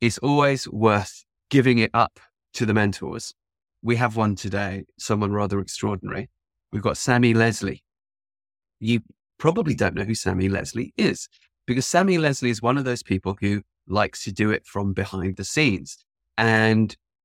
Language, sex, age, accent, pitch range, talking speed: English, male, 30-49, British, 95-115 Hz, 160 wpm